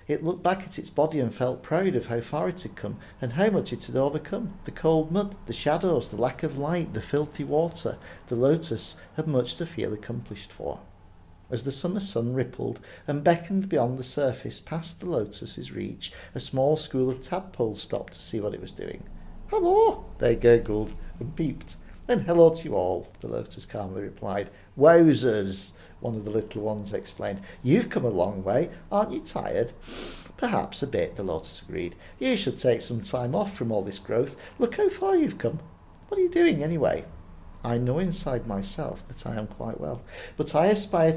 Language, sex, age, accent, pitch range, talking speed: English, male, 50-69, British, 115-180 Hz, 195 wpm